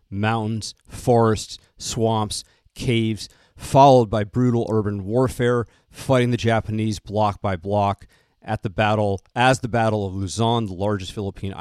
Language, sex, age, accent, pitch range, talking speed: English, male, 40-59, American, 105-125 Hz, 135 wpm